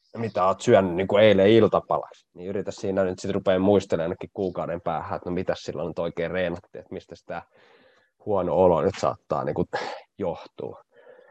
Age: 20-39